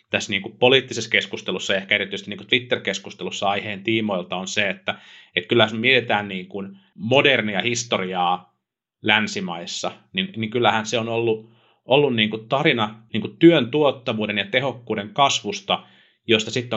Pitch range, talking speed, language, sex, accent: 100-120 Hz, 120 wpm, Finnish, male, native